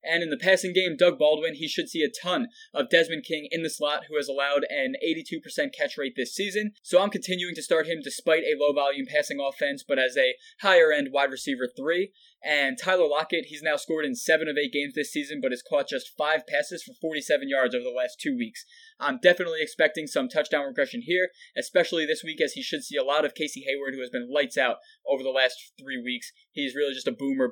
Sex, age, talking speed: male, 20-39, 235 wpm